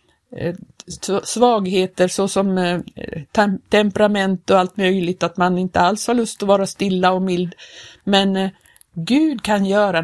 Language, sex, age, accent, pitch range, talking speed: Swedish, female, 50-69, native, 170-215 Hz, 125 wpm